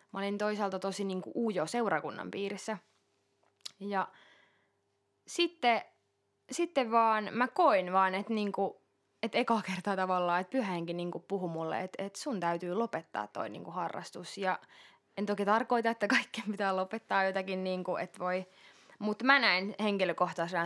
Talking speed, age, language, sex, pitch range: 140 wpm, 20-39, Finnish, female, 175-205 Hz